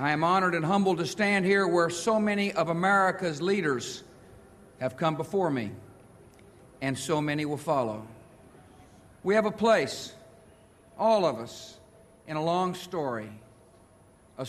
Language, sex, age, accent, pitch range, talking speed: English, male, 50-69, American, 120-185 Hz, 145 wpm